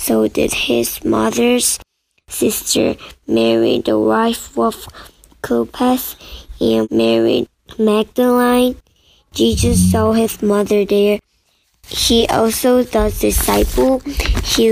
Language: Korean